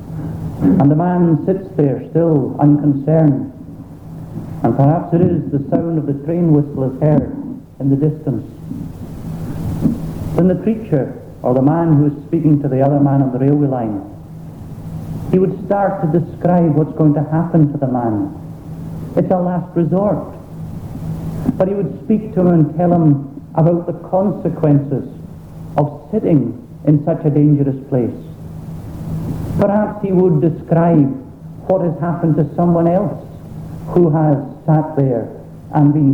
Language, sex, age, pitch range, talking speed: English, male, 70-89, 140-170 Hz, 150 wpm